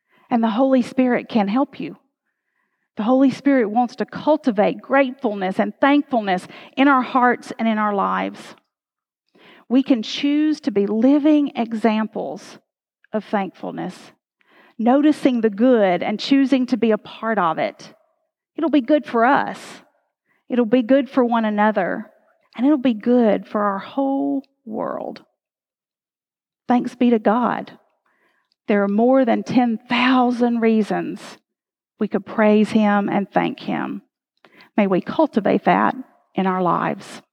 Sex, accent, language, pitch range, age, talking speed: female, American, English, 215-270 Hz, 40-59, 140 wpm